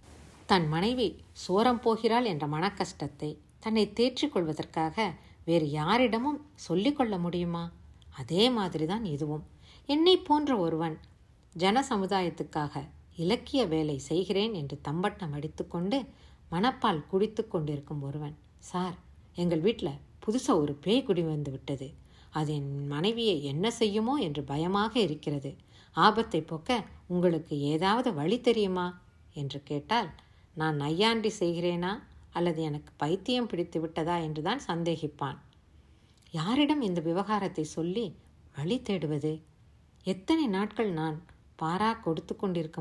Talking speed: 105 wpm